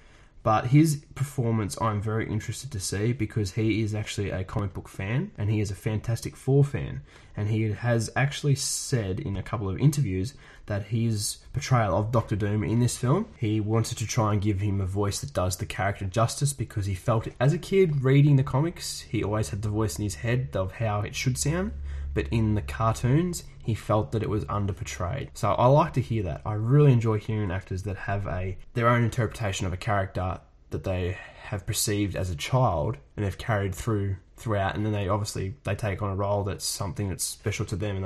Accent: Australian